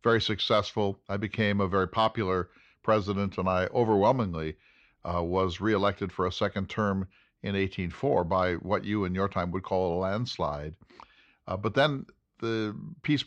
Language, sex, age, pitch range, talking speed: English, male, 50-69, 95-110 Hz, 160 wpm